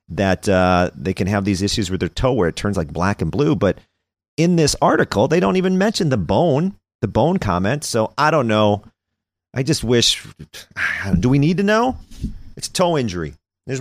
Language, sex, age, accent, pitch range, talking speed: English, male, 40-59, American, 90-145 Hz, 200 wpm